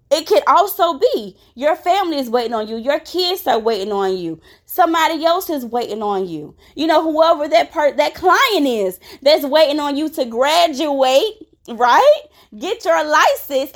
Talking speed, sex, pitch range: 170 wpm, female, 265-325 Hz